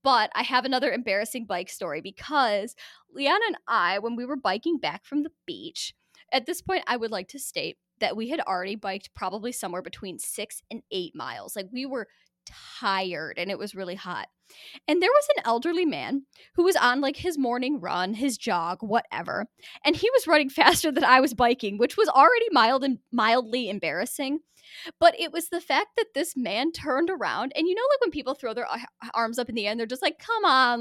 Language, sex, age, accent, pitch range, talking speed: English, female, 10-29, American, 210-320 Hz, 210 wpm